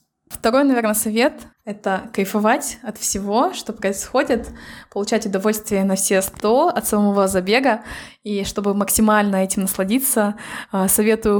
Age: 20-39